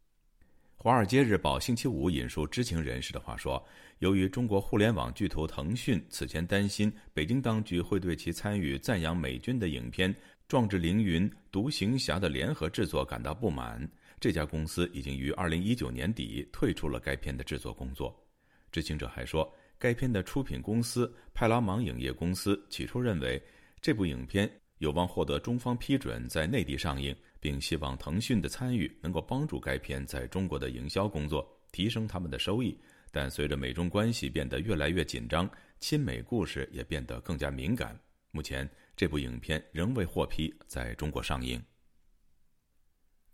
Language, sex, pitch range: Chinese, male, 75-105 Hz